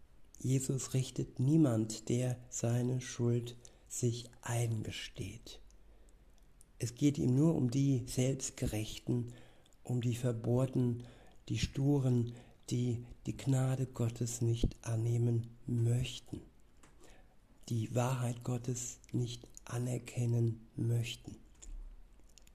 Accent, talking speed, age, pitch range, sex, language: German, 90 wpm, 60-79, 115-130 Hz, male, German